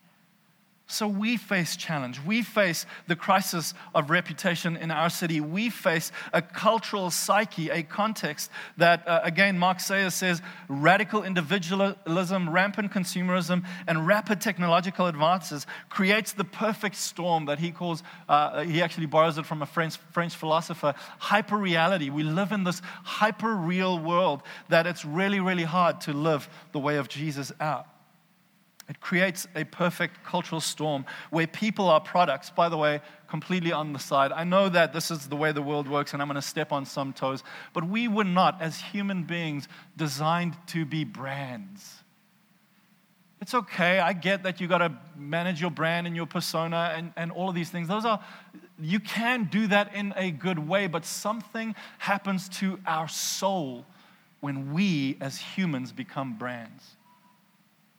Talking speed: 165 wpm